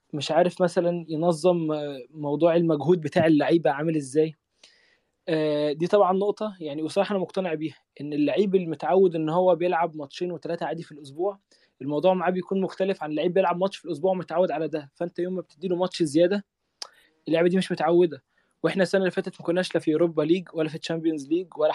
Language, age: Arabic, 20-39